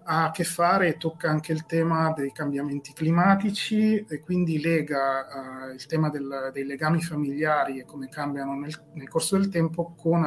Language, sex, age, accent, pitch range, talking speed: Italian, male, 30-49, native, 135-170 Hz, 180 wpm